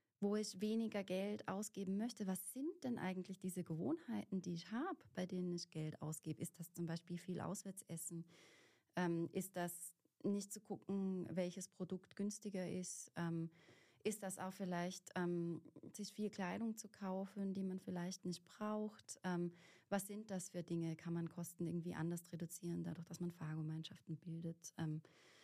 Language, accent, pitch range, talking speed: German, German, 170-200 Hz, 165 wpm